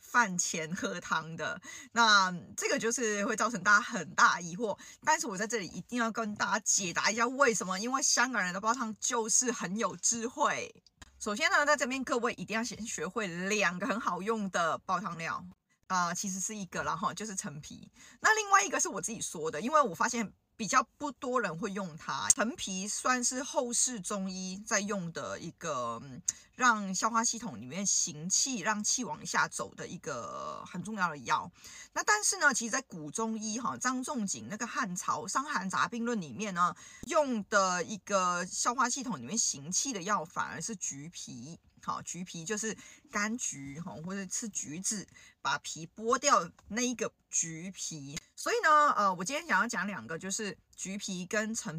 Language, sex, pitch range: Chinese, female, 185-240 Hz